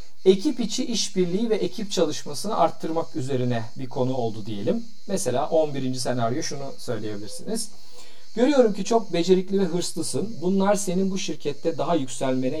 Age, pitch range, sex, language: 50-69, 125-190 Hz, male, Turkish